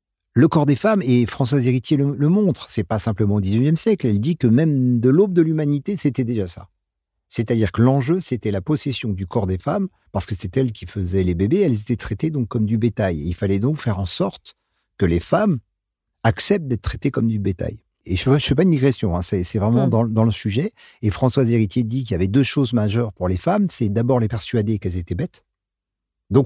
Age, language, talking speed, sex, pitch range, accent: 50-69, French, 235 wpm, male, 100-140 Hz, French